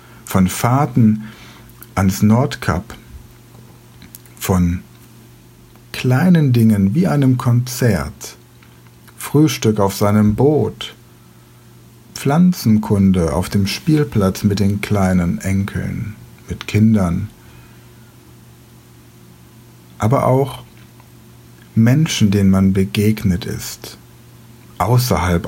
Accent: German